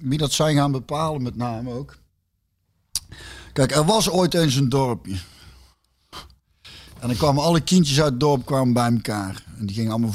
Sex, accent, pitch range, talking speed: male, Dutch, 115-160 Hz, 175 wpm